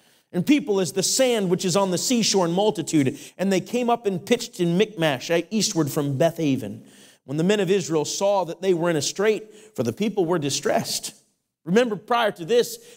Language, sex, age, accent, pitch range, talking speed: English, male, 40-59, American, 190-245 Hz, 205 wpm